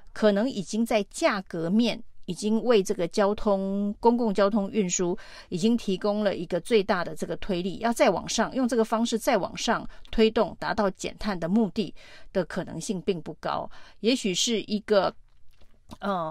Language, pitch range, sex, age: Chinese, 185-225 Hz, female, 30-49